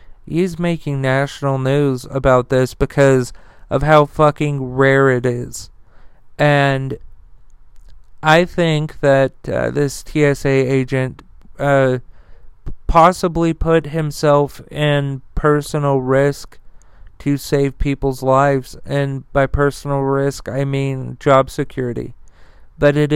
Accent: American